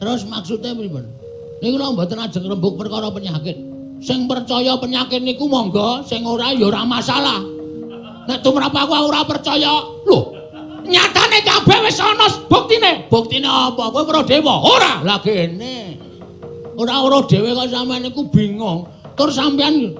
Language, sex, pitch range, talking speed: Indonesian, male, 235-310 Hz, 140 wpm